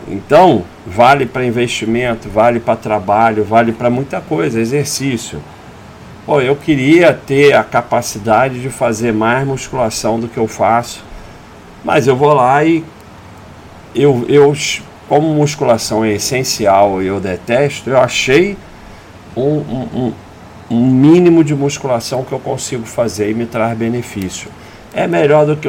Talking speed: 140 wpm